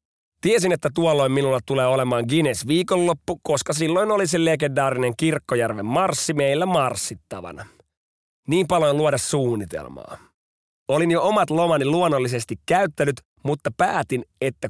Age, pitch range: 30-49, 120-155 Hz